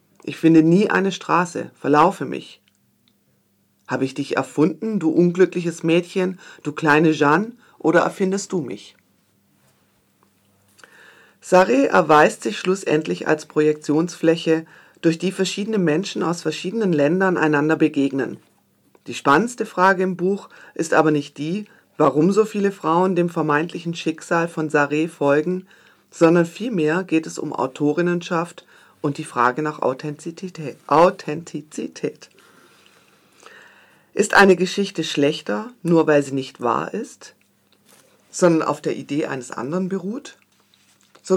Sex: female